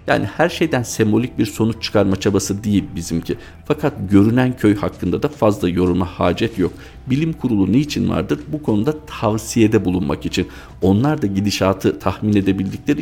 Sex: male